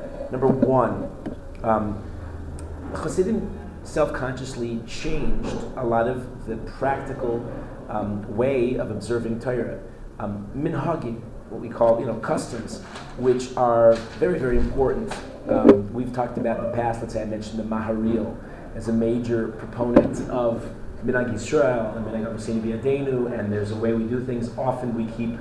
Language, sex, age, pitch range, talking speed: English, male, 30-49, 110-125 Hz, 135 wpm